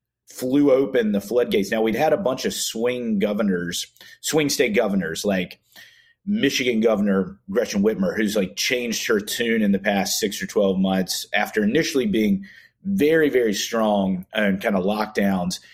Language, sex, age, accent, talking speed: English, male, 30-49, American, 160 wpm